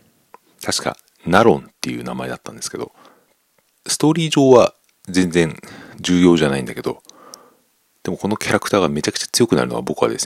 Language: Japanese